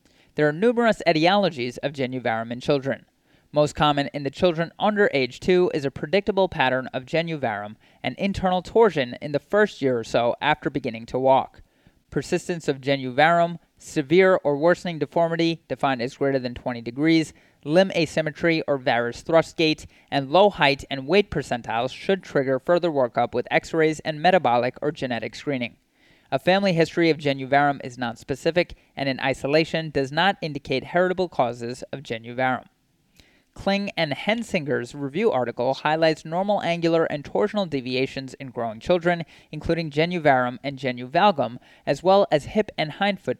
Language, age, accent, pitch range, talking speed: English, 30-49, American, 135-175 Hz, 155 wpm